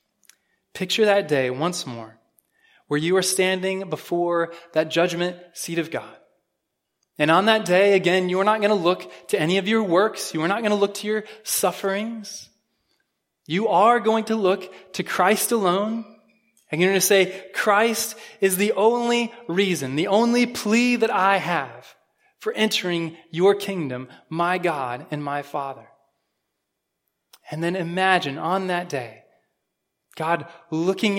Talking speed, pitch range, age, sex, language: 155 wpm, 165-205 Hz, 20-39, male, English